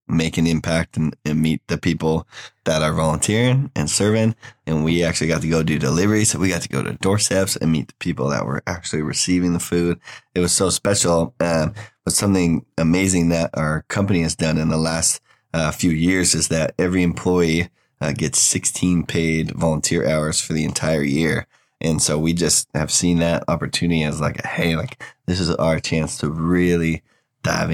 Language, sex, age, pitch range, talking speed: English, male, 20-39, 80-90 Hz, 195 wpm